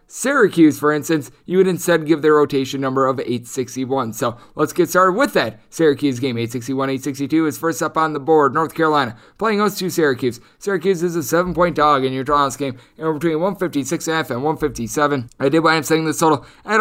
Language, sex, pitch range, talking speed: English, male, 135-160 Hz, 205 wpm